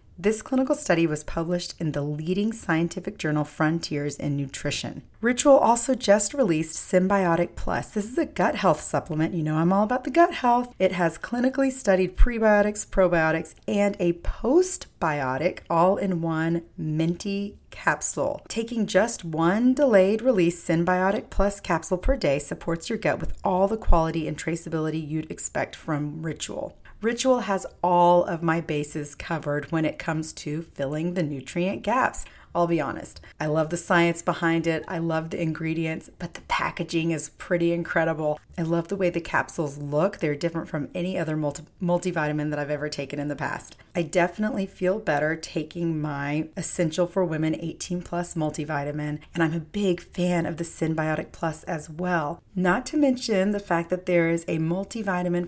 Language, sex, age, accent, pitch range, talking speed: English, female, 40-59, American, 155-185 Hz, 170 wpm